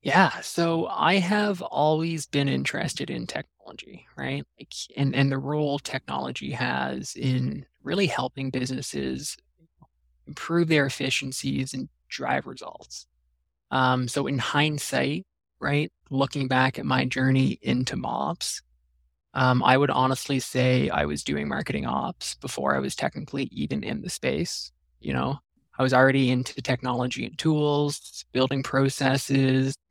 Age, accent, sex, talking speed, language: 20-39, American, male, 135 wpm, English